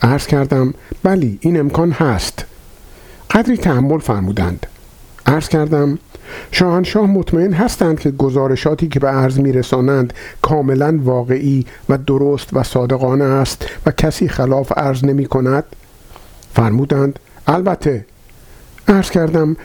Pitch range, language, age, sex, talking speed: 130-180 Hz, Persian, 50-69, male, 115 wpm